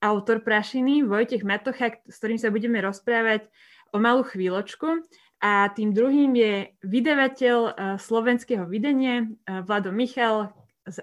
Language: Slovak